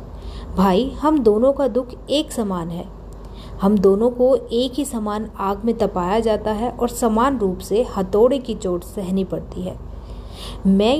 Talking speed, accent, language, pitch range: 165 wpm, native, Hindi, 190-250 Hz